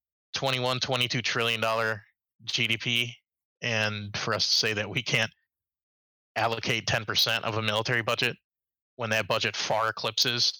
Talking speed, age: 135 wpm, 20-39